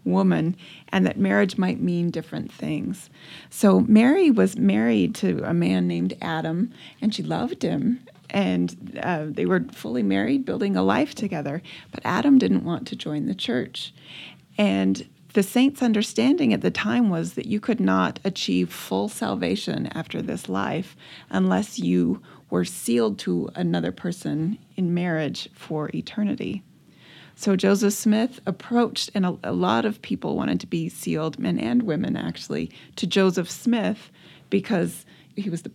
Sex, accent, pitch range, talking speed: female, American, 160-215 Hz, 155 wpm